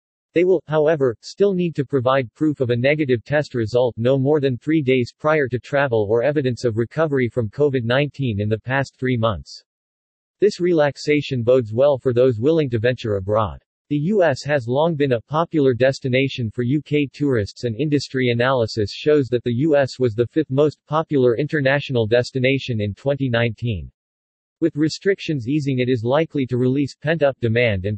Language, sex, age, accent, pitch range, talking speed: English, male, 40-59, American, 120-150 Hz, 170 wpm